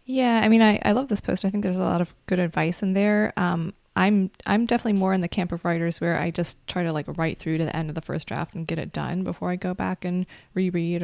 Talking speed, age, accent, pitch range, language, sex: 290 wpm, 20-39, American, 165-195 Hz, English, female